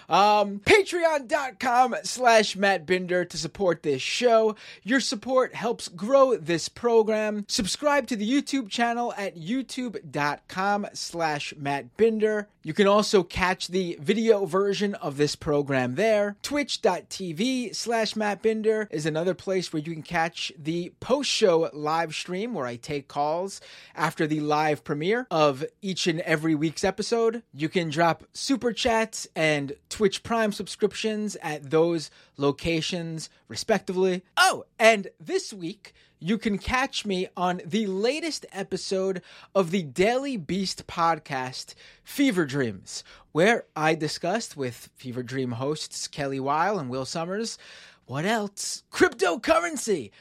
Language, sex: English, male